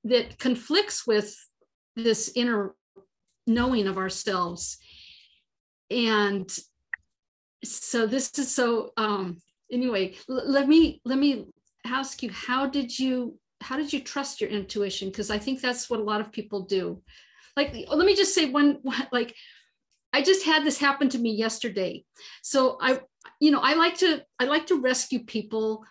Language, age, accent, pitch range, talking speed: English, 50-69, American, 215-275 Hz, 155 wpm